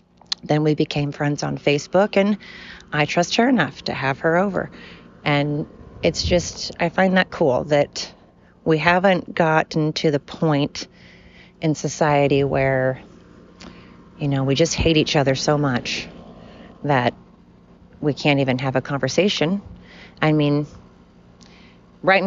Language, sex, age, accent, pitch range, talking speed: English, female, 30-49, American, 135-165 Hz, 135 wpm